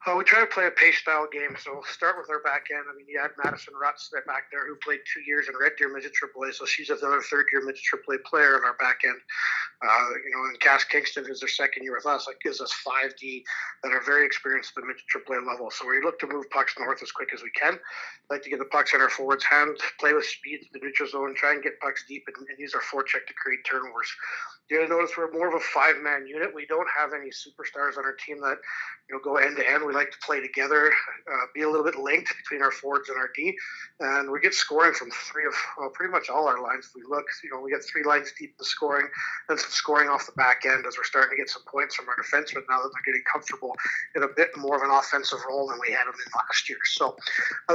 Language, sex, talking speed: English, male, 265 wpm